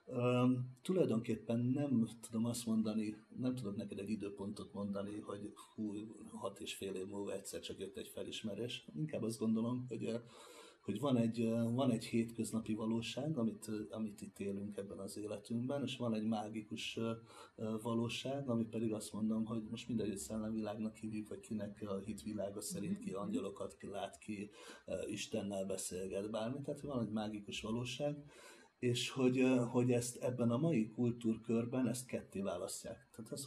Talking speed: 160 wpm